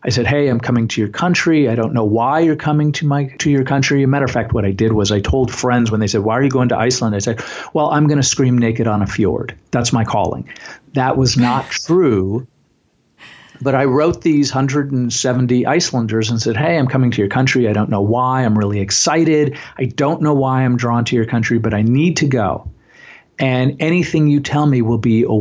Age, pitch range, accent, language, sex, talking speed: 50-69, 110-135 Hz, American, English, male, 240 wpm